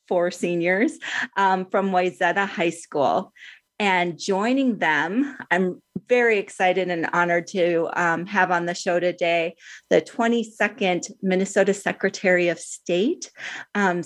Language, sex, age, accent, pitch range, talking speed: English, female, 40-59, American, 175-210 Hz, 125 wpm